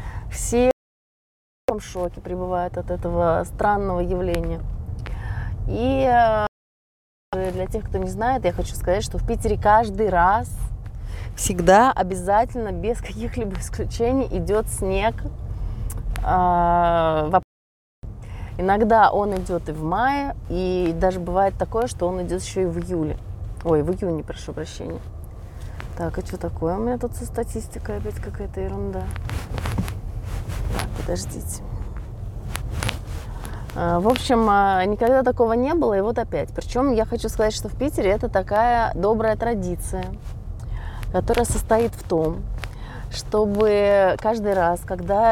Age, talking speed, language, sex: 20-39, 125 wpm, Russian, female